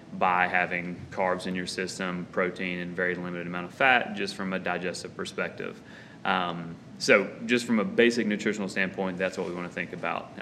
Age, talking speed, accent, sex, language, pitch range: 30-49, 190 wpm, American, male, English, 90-105 Hz